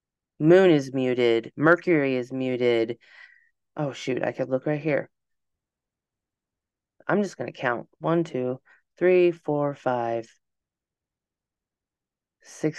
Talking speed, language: 115 wpm, English